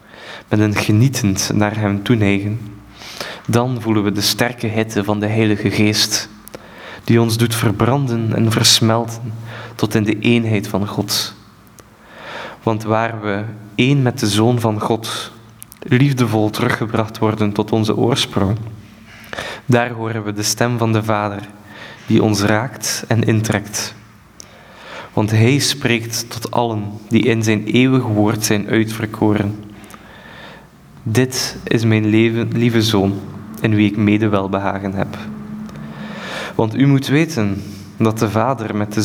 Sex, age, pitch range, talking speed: male, 20-39, 105-115 Hz, 135 wpm